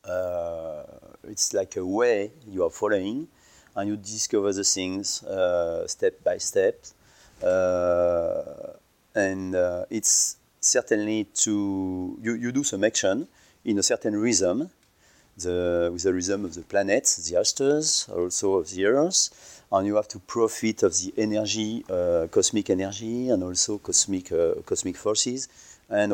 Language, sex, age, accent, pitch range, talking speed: English, male, 40-59, French, 95-120 Hz, 140 wpm